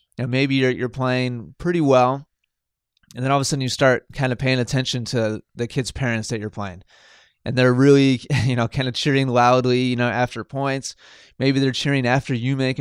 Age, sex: 20-39, male